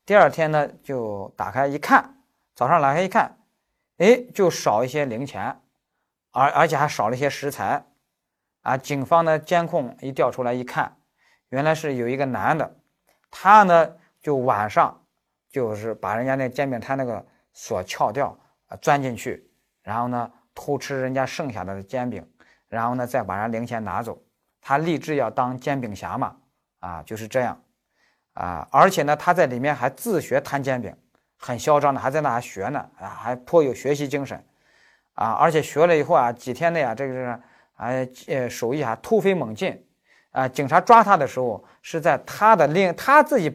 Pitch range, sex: 120-165 Hz, male